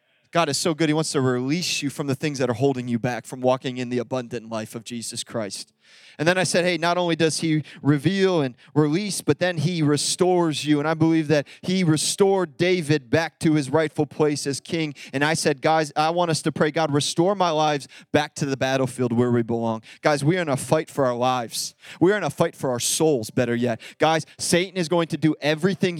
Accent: American